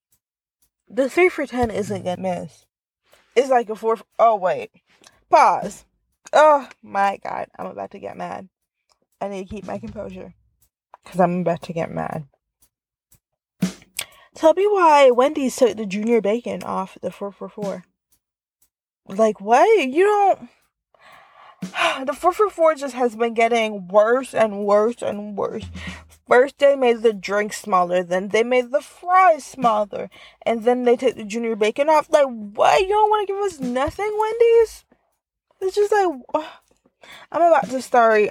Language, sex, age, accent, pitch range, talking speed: English, female, 20-39, American, 195-285 Hz, 160 wpm